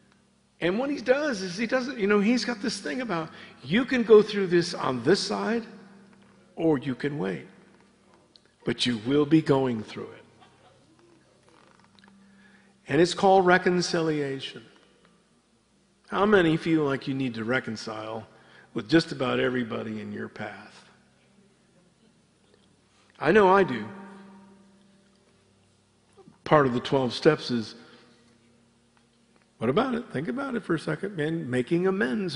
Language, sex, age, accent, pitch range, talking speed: English, male, 50-69, American, 160-240 Hz, 135 wpm